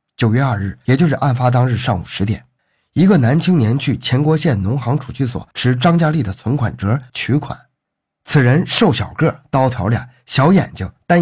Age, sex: 50-69, male